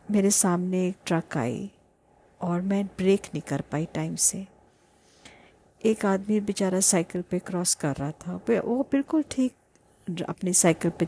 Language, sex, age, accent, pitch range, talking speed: Hindi, female, 50-69, native, 165-215 Hz, 150 wpm